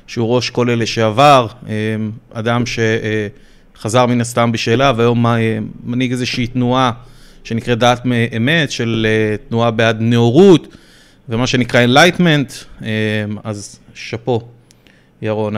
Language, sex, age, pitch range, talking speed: Hebrew, male, 30-49, 115-145 Hz, 105 wpm